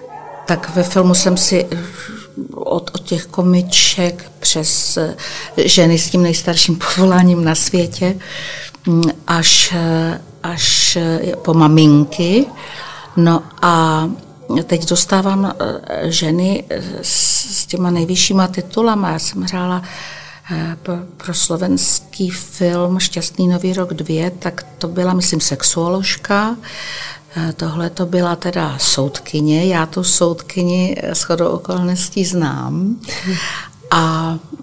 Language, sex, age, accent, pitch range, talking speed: Czech, female, 50-69, native, 160-180 Hz, 100 wpm